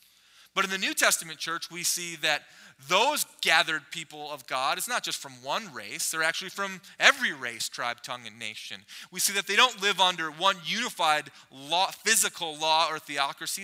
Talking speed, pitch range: 190 wpm, 135-190 Hz